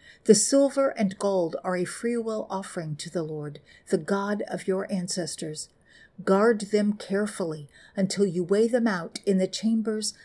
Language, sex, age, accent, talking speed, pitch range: English, female, 50-69, American, 160 wpm, 170-215 Hz